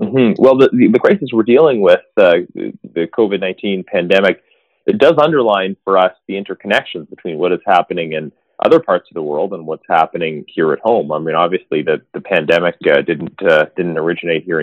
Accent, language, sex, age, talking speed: American, English, male, 30-49, 195 wpm